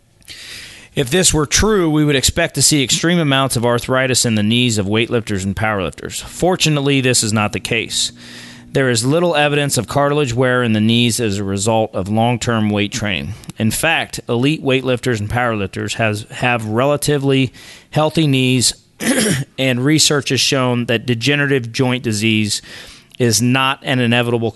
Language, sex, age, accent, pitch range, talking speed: English, male, 30-49, American, 110-135 Hz, 160 wpm